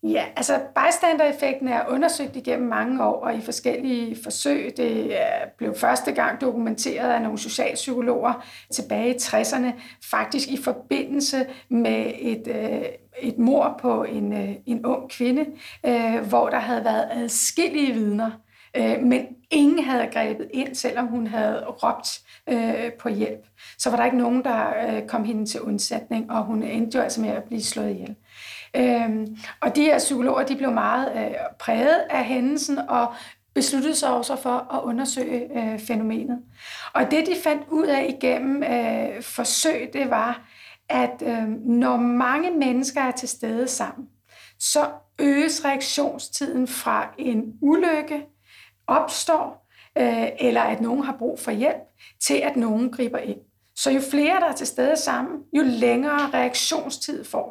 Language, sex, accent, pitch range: Danish, female, native, 235-285 Hz